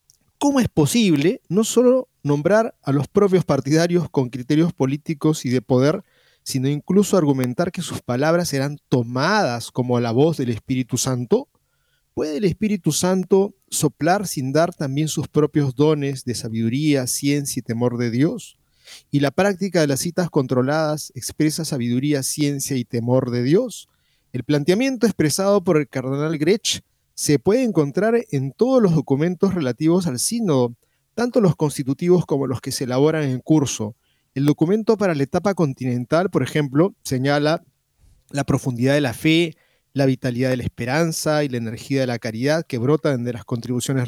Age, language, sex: 40-59, Spanish, male